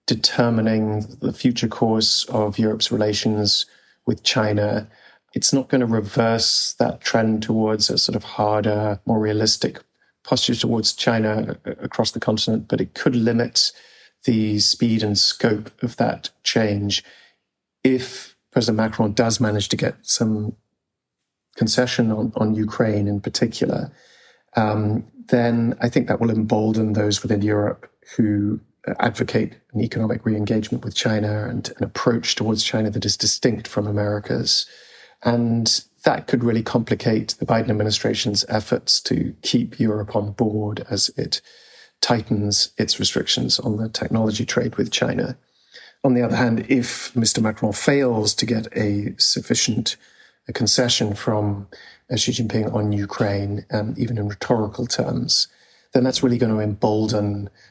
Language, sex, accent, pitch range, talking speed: English, male, British, 105-120 Hz, 140 wpm